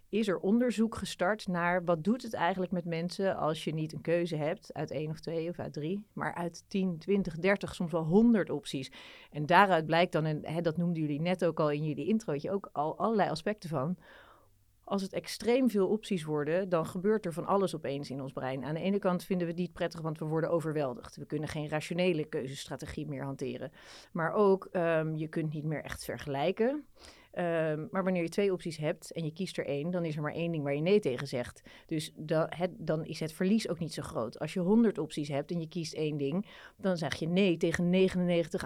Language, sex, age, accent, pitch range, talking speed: Dutch, female, 30-49, Dutch, 155-190 Hz, 220 wpm